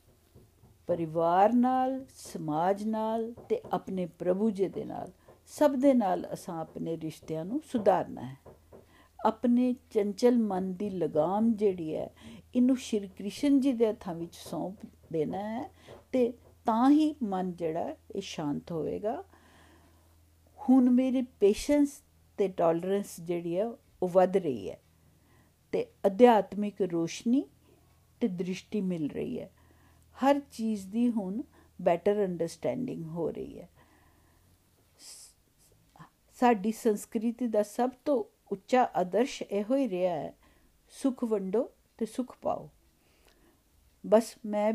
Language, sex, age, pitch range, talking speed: Punjabi, female, 50-69, 175-245 Hz, 100 wpm